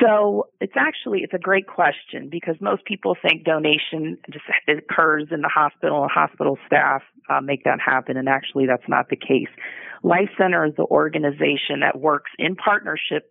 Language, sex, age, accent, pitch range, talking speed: English, female, 40-59, American, 135-155 Hz, 175 wpm